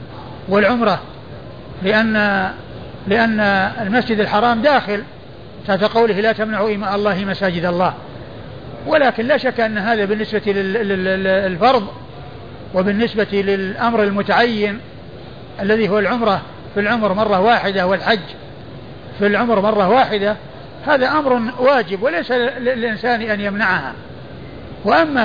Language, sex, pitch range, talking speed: Arabic, male, 185-225 Hz, 100 wpm